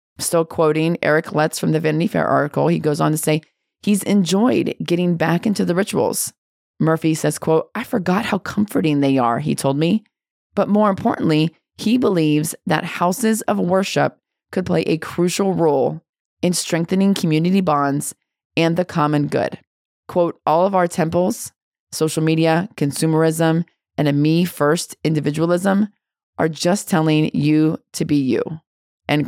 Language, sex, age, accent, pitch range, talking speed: English, female, 30-49, American, 155-190 Hz, 155 wpm